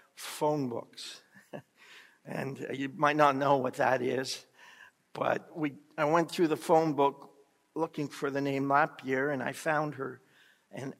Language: English